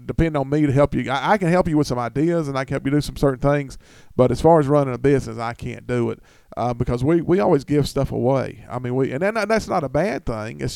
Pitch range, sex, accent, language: 120-145 Hz, male, American, English